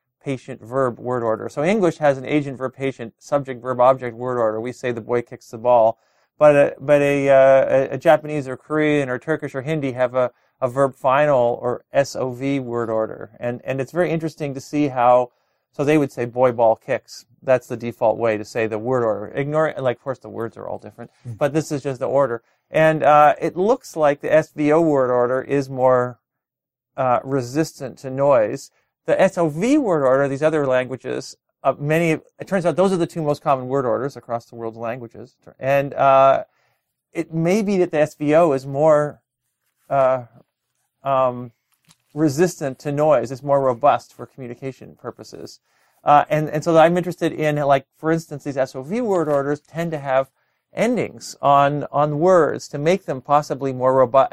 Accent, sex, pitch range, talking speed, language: American, male, 125-150 Hz, 200 wpm, English